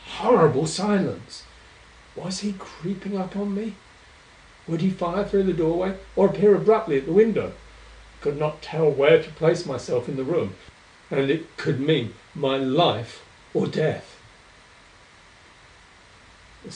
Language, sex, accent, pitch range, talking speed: English, male, British, 100-160 Hz, 140 wpm